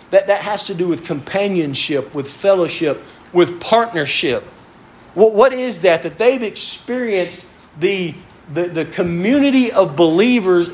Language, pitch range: English, 175-235 Hz